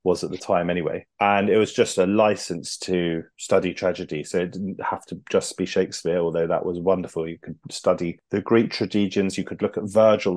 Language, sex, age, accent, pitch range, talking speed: English, male, 30-49, British, 90-115 Hz, 215 wpm